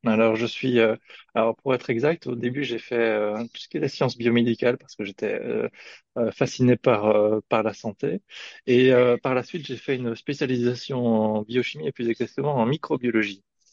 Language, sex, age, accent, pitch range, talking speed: French, male, 20-39, French, 110-130 Hz, 180 wpm